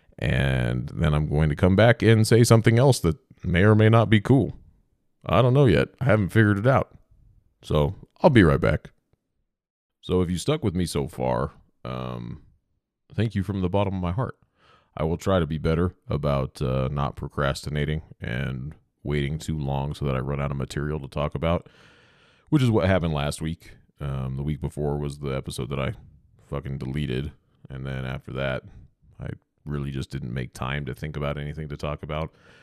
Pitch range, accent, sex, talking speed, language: 70-95 Hz, American, male, 195 wpm, English